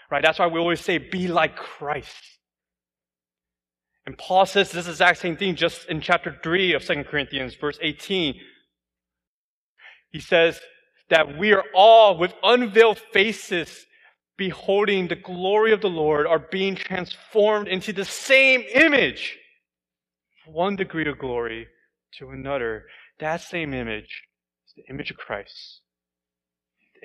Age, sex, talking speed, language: 20-39, male, 140 wpm, English